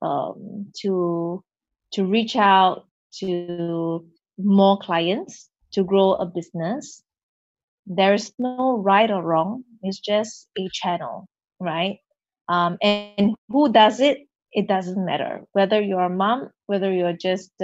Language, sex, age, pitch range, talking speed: English, female, 20-39, 185-225 Hz, 130 wpm